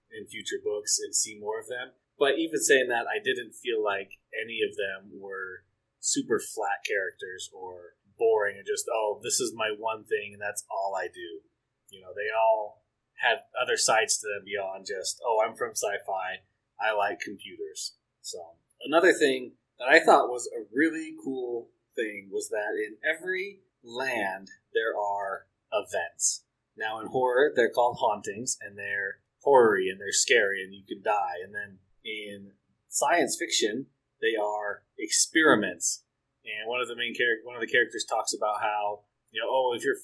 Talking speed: 175 wpm